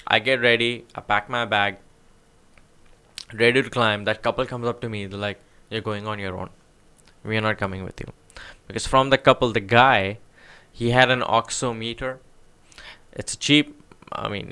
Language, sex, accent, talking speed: English, male, Indian, 180 wpm